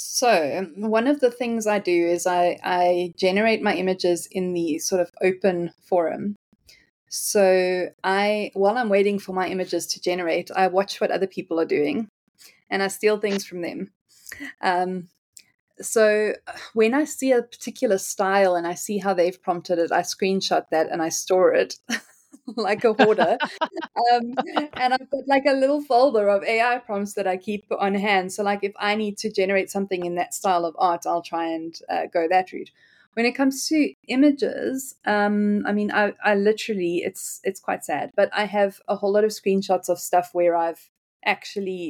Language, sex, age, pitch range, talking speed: English, female, 20-39, 175-210 Hz, 190 wpm